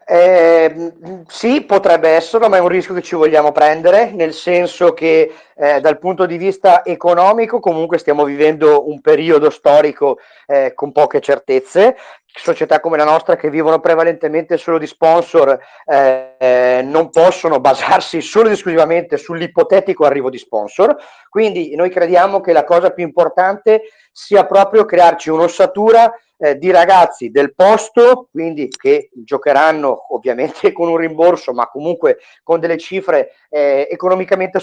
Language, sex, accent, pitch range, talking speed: Italian, male, native, 160-195 Hz, 145 wpm